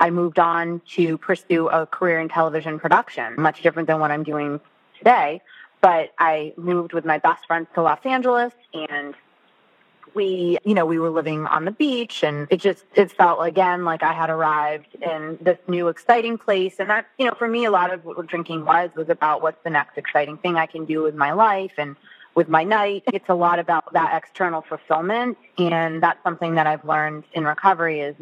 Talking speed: 210 wpm